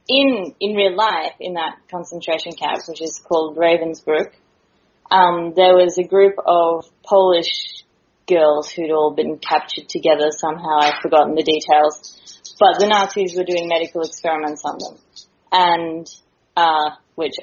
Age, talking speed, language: 20-39, 145 wpm, English